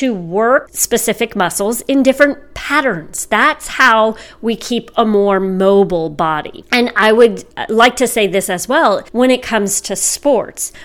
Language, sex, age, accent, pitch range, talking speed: English, female, 40-59, American, 190-255 Hz, 160 wpm